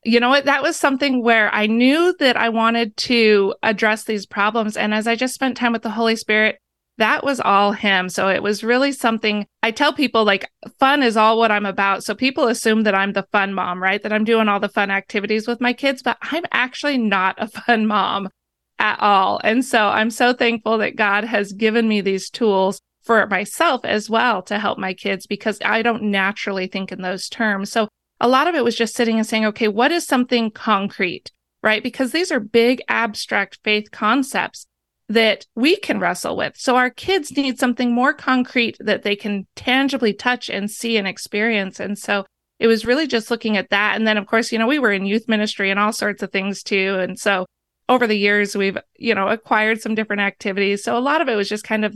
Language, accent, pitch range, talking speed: English, American, 200-240 Hz, 220 wpm